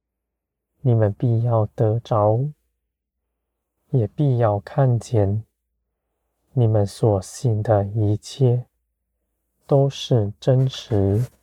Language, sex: Chinese, male